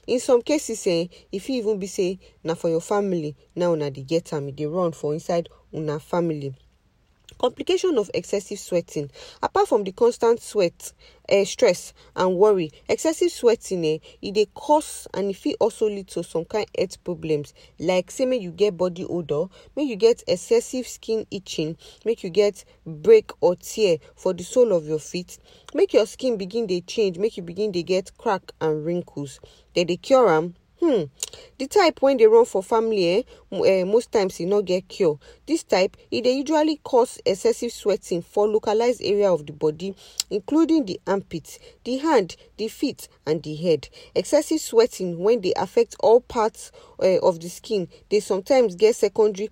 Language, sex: English, female